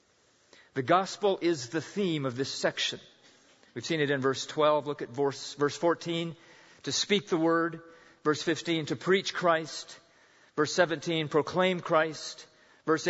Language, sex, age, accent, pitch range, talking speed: English, male, 40-59, American, 155-185 Hz, 145 wpm